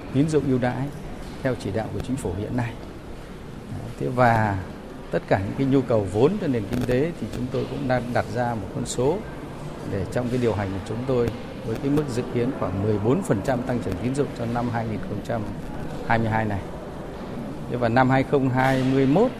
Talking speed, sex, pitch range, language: 190 wpm, male, 110-130 Hz, Vietnamese